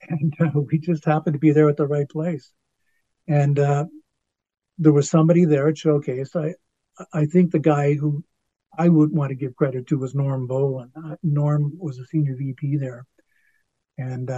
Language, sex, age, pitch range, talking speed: English, male, 50-69, 140-175 Hz, 185 wpm